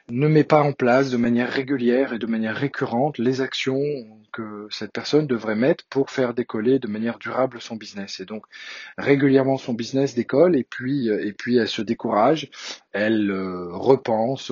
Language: French